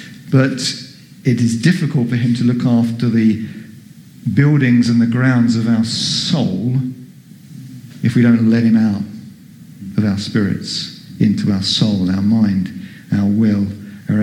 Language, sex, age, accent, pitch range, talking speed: English, male, 50-69, British, 115-135 Hz, 145 wpm